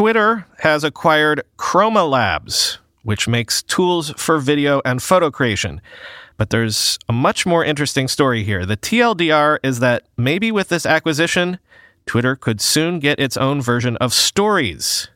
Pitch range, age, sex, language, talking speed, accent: 120-165 Hz, 30-49, male, English, 150 wpm, American